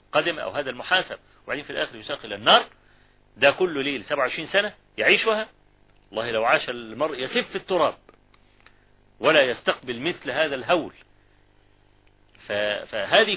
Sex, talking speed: male, 130 wpm